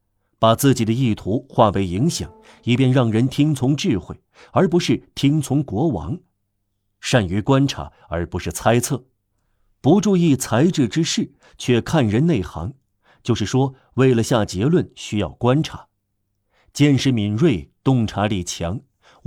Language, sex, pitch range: Chinese, male, 100-140 Hz